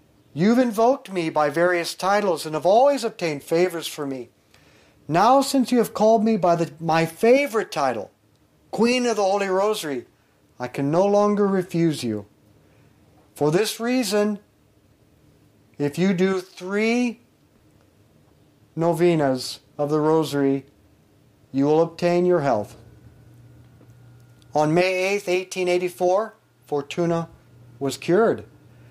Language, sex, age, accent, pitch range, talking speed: English, male, 50-69, American, 140-195 Hz, 120 wpm